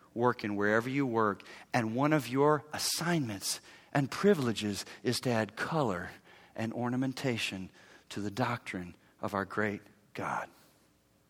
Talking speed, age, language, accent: 135 wpm, 40-59, English, American